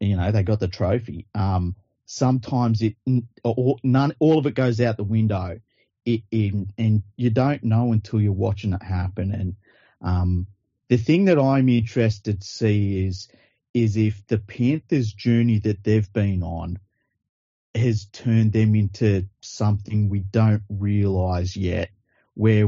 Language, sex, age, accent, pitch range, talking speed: English, male, 30-49, Australian, 100-120 Hz, 155 wpm